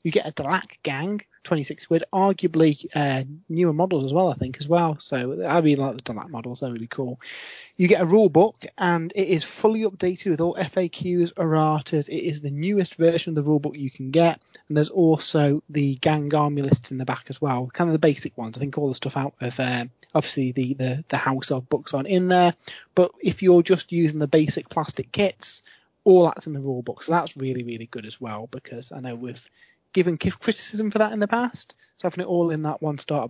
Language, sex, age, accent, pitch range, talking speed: English, male, 30-49, British, 140-180 Hz, 235 wpm